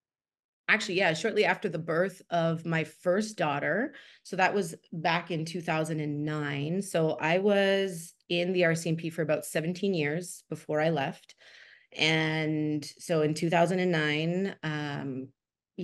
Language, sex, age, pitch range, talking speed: English, female, 30-49, 155-190 Hz, 125 wpm